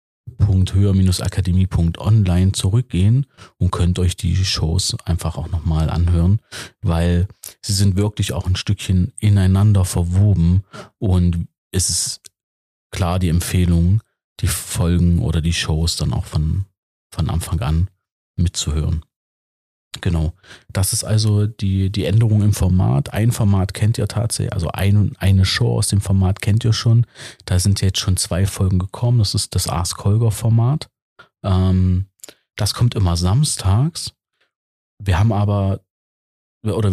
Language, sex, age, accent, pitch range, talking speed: German, male, 40-59, German, 85-105 Hz, 140 wpm